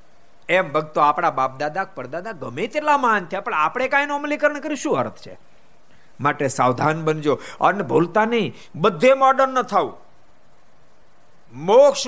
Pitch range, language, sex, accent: 145-245 Hz, Gujarati, male, native